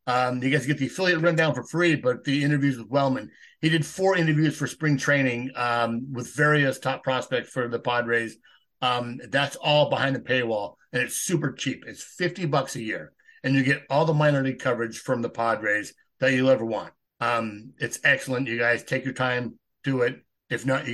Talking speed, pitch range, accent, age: 205 wpm, 125-160 Hz, American, 50-69